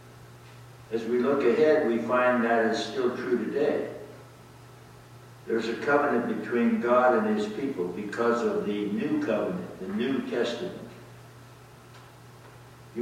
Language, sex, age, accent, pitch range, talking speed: English, male, 60-79, American, 105-120 Hz, 130 wpm